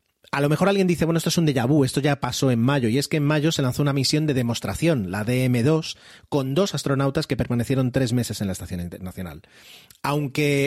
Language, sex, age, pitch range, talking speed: Spanish, male, 30-49, 110-145 Hz, 230 wpm